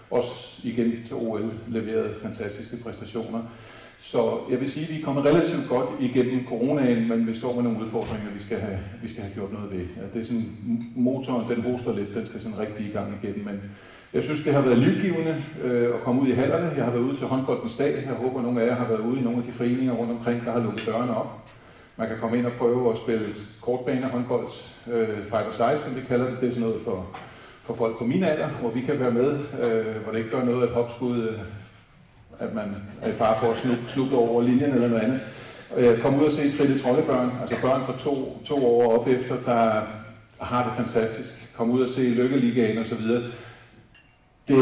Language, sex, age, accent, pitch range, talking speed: Danish, male, 40-59, native, 110-125 Hz, 230 wpm